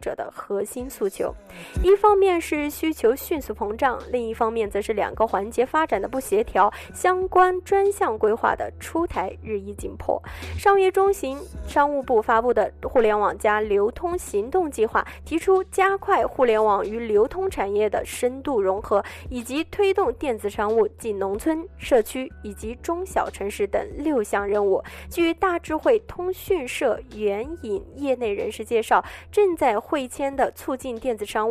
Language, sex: Chinese, female